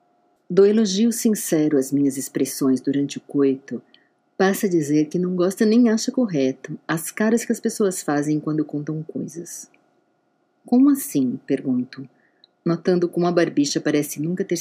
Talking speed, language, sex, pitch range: 150 wpm, Portuguese, female, 145-215 Hz